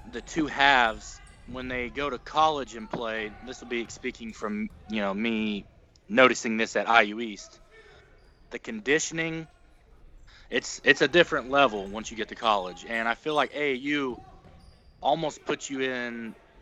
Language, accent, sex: English, American, male